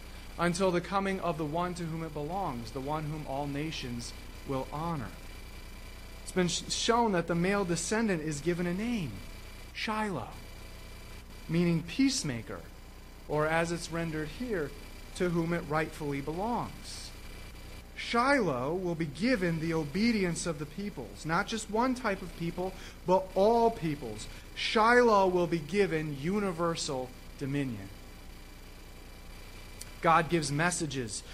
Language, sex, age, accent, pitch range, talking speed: English, male, 30-49, American, 140-205 Hz, 130 wpm